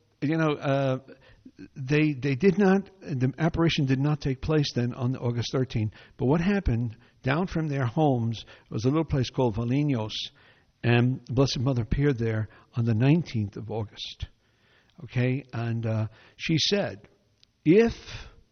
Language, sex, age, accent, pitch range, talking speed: English, male, 60-79, American, 115-160 Hz, 150 wpm